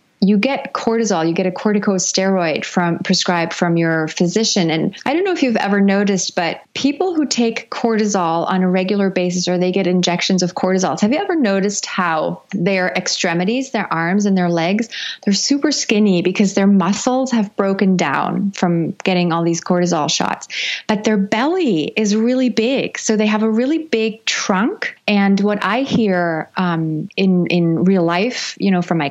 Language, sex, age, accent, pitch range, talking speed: English, female, 30-49, American, 180-225 Hz, 180 wpm